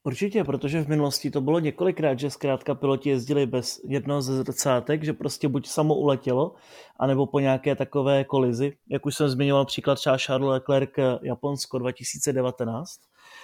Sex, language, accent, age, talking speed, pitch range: male, Czech, native, 30-49, 155 wpm, 130-155 Hz